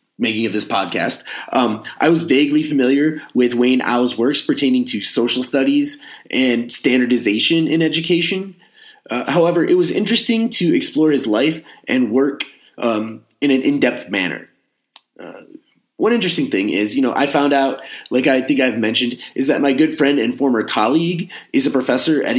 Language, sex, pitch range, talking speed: English, male, 120-165 Hz, 170 wpm